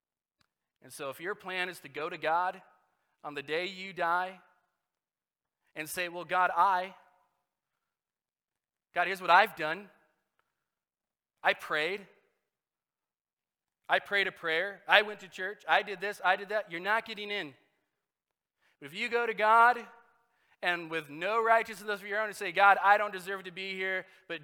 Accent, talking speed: American, 165 wpm